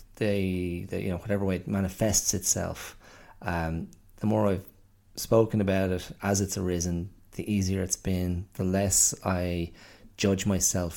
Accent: Irish